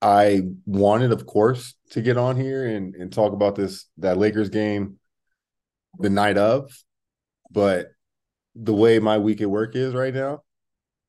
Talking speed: 155 wpm